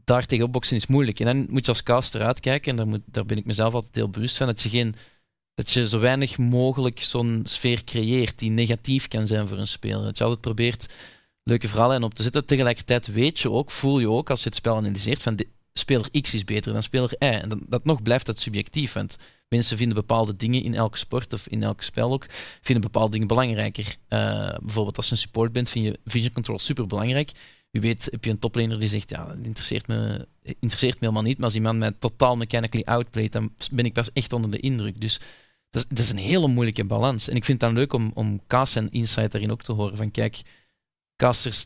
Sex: male